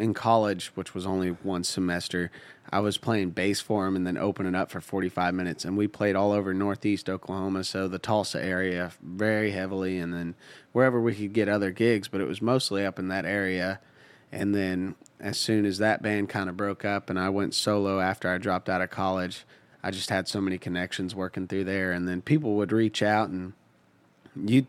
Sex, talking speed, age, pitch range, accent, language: male, 210 wpm, 30-49, 90-105 Hz, American, English